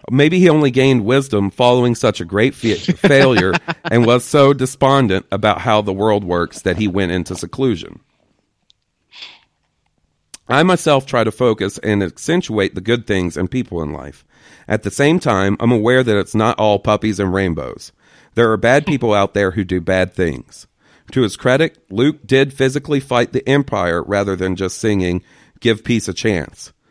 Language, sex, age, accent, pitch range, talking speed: English, male, 40-59, American, 100-130 Hz, 175 wpm